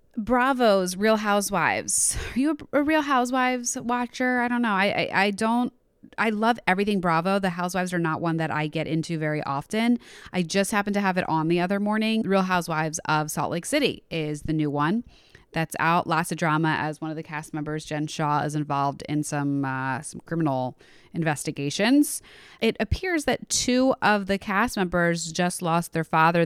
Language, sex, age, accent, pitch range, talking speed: English, female, 20-39, American, 155-205 Hz, 190 wpm